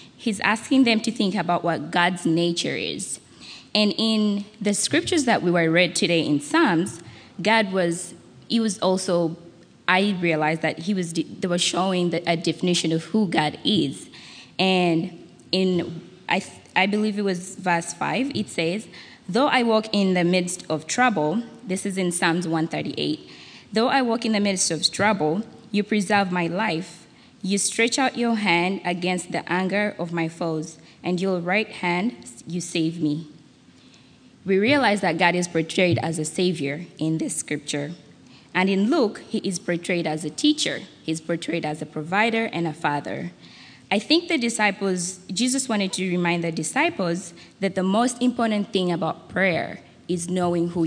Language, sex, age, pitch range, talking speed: English, female, 20-39, 170-210 Hz, 170 wpm